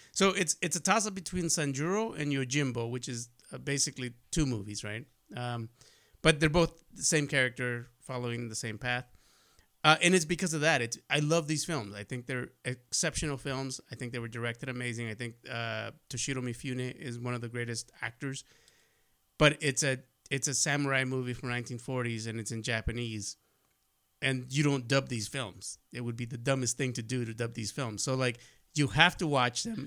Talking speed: 195 wpm